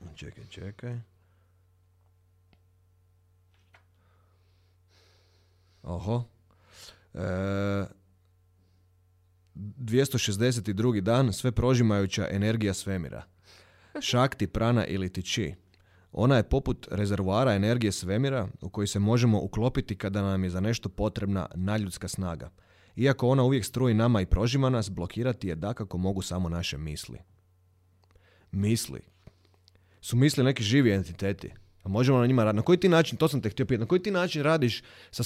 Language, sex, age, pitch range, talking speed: Croatian, male, 30-49, 95-130 Hz, 125 wpm